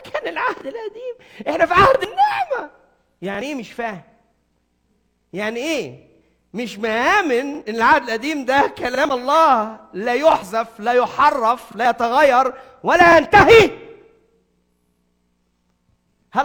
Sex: male